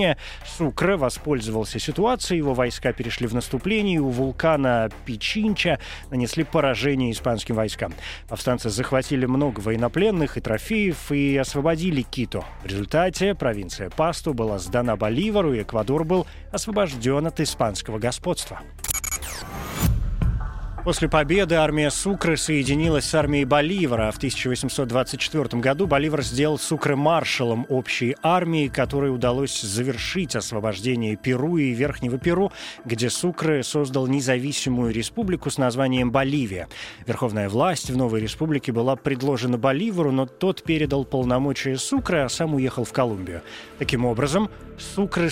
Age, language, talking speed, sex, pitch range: 20-39, Russian, 120 wpm, male, 120-155 Hz